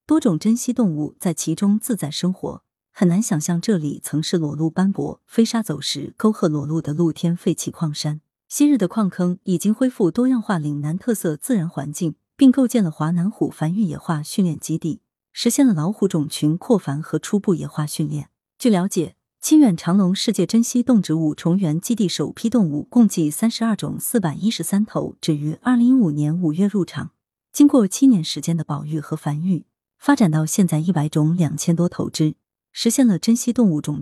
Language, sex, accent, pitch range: Chinese, female, native, 155-220 Hz